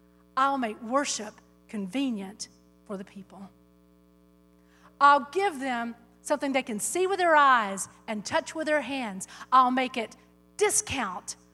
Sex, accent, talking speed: female, American, 135 wpm